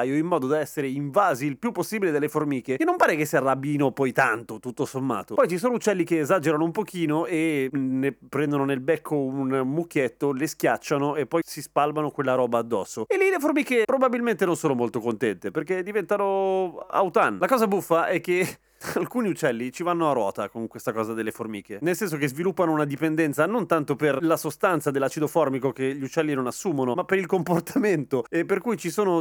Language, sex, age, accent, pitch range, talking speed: Italian, male, 30-49, native, 135-180 Hz, 205 wpm